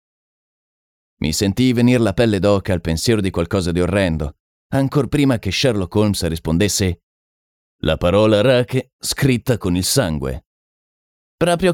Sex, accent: male, native